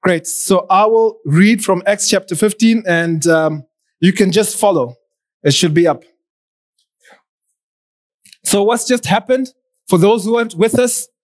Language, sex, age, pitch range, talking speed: English, male, 20-39, 195-250 Hz, 160 wpm